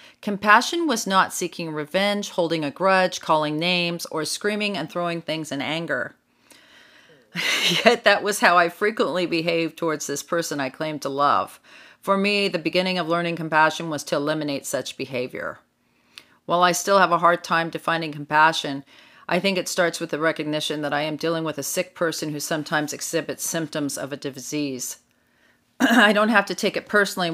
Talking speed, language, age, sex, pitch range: 180 wpm, English, 40-59, female, 150-180 Hz